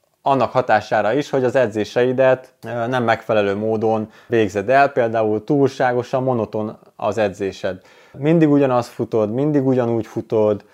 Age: 20-39